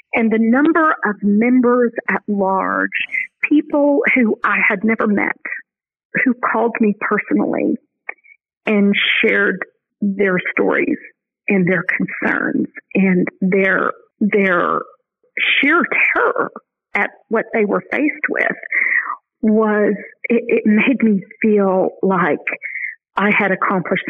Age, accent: 50-69, American